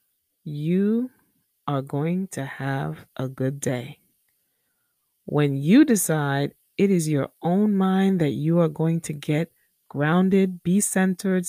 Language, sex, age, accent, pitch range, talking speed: English, female, 20-39, American, 150-210 Hz, 130 wpm